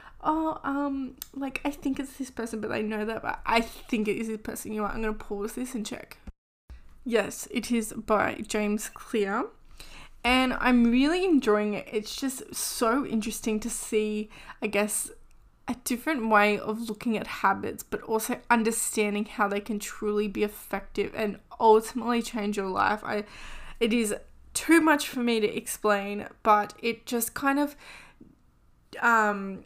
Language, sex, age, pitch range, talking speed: English, female, 10-29, 210-240 Hz, 170 wpm